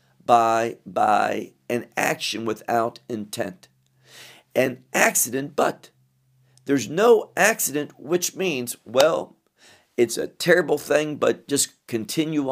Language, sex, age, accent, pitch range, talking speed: English, male, 50-69, American, 120-170 Hz, 105 wpm